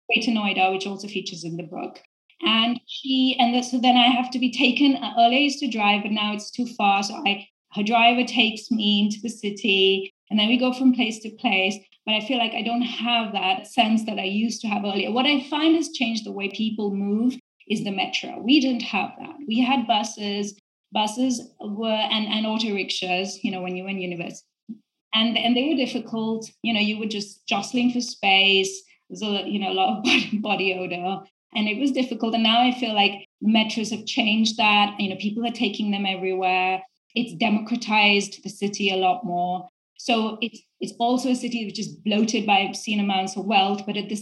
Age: 30-49